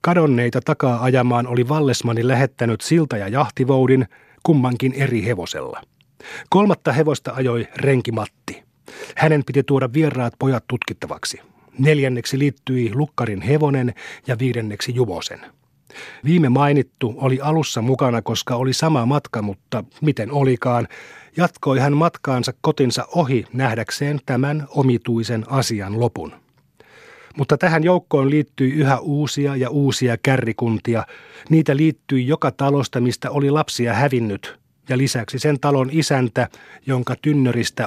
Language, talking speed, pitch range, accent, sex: Finnish, 120 wpm, 120-145 Hz, native, male